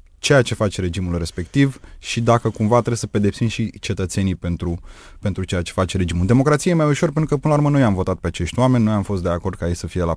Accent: native